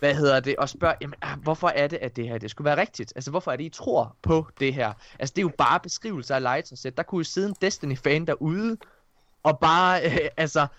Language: Danish